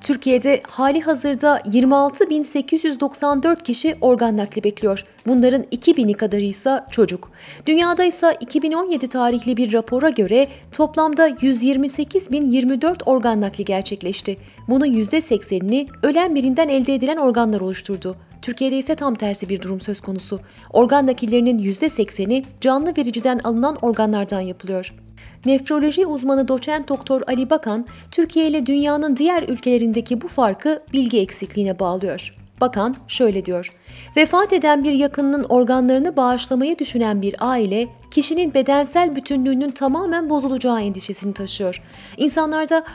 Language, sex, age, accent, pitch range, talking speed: Turkish, female, 30-49, native, 220-290 Hz, 120 wpm